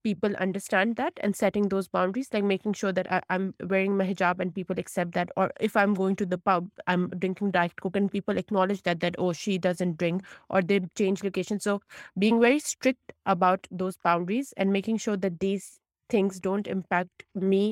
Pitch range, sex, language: 180-200 Hz, female, English